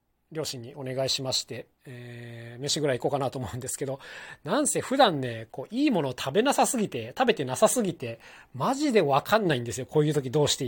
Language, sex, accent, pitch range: Japanese, male, native, 130-180 Hz